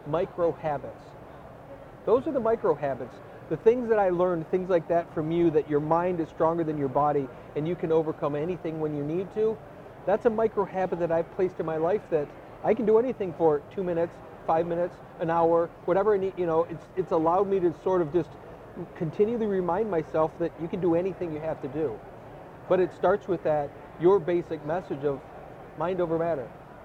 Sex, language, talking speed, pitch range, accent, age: male, English, 210 wpm, 155-185 Hz, American, 40-59